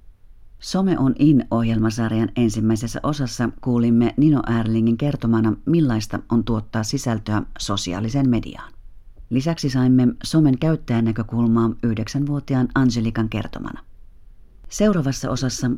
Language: Finnish